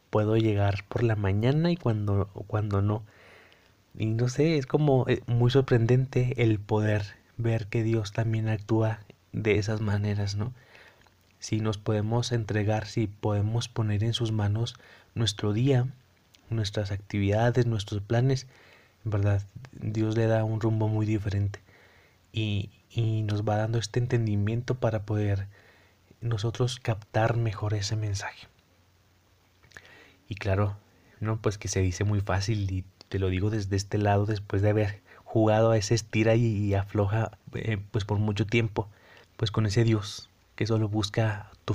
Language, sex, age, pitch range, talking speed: Spanish, male, 20-39, 100-115 Hz, 150 wpm